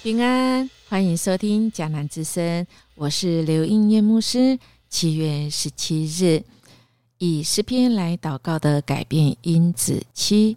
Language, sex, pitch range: Chinese, female, 145-190 Hz